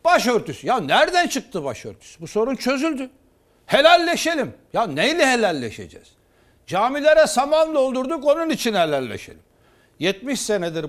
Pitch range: 180-285 Hz